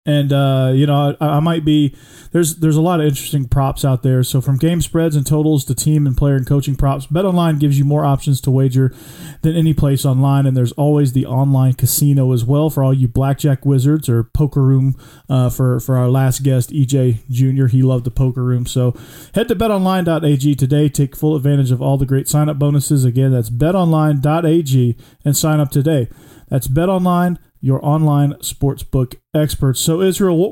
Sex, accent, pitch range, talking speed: male, American, 130-150 Hz, 200 wpm